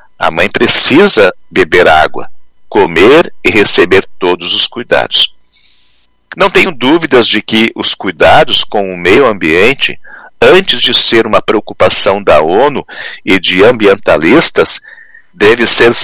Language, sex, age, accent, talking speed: Portuguese, male, 50-69, Brazilian, 125 wpm